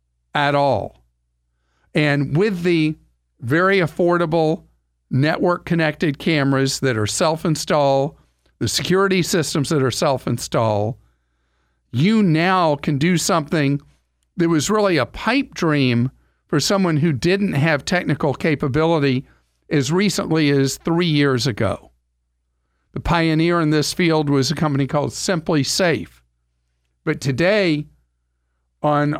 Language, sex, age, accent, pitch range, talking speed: English, male, 50-69, American, 110-170 Hz, 115 wpm